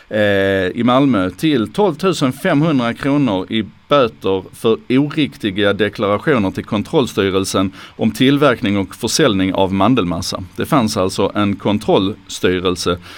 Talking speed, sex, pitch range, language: 105 wpm, male, 100-140 Hz, Swedish